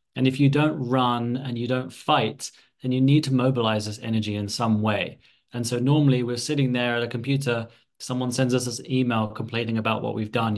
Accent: British